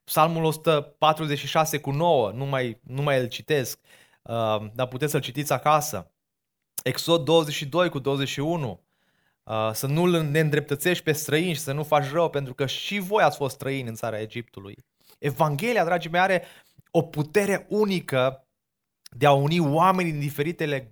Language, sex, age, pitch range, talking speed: Romanian, male, 20-39, 125-170 Hz, 155 wpm